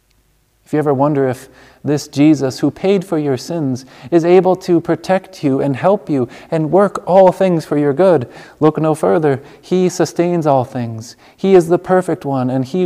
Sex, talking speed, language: male, 190 wpm, English